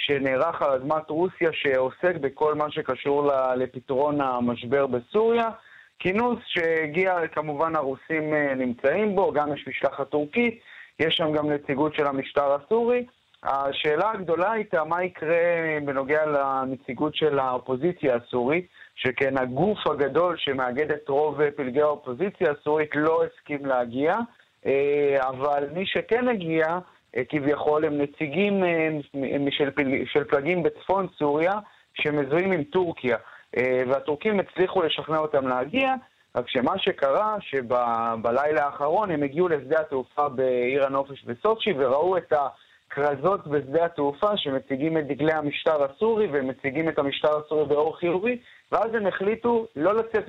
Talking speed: 125 wpm